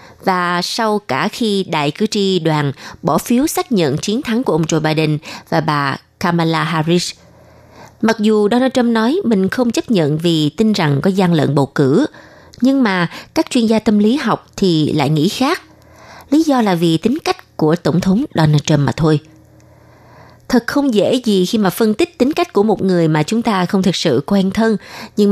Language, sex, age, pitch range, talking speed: Vietnamese, female, 20-39, 165-240 Hz, 205 wpm